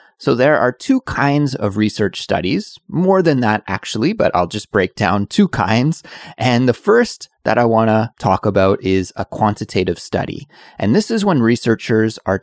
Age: 30-49